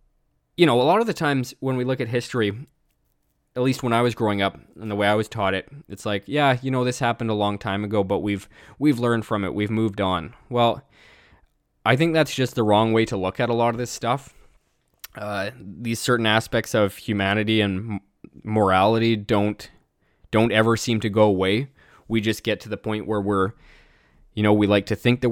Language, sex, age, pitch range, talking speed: English, male, 20-39, 105-120 Hz, 220 wpm